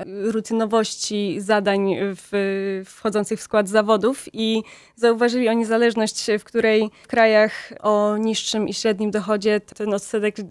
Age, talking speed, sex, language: 20-39, 125 wpm, female, Polish